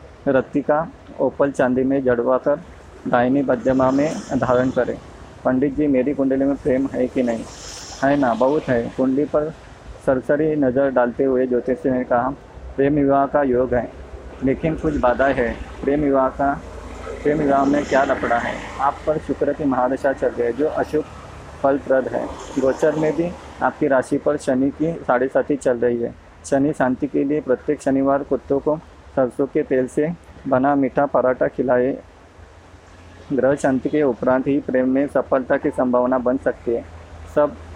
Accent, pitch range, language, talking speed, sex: native, 125-145 Hz, Hindi, 165 wpm, male